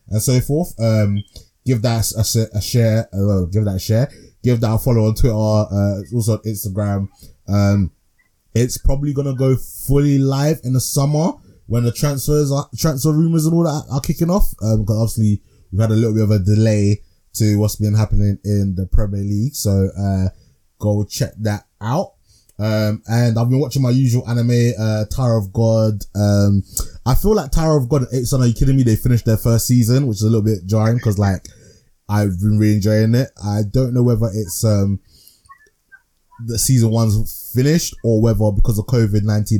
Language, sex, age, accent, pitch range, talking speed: English, male, 20-39, British, 100-125 Hz, 200 wpm